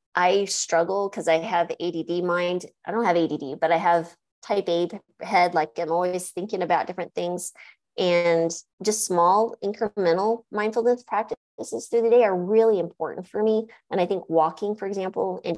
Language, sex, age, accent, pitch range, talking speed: English, female, 30-49, American, 165-225 Hz, 175 wpm